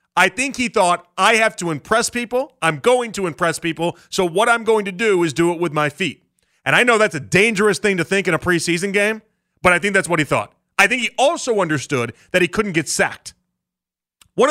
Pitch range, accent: 155-215 Hz, American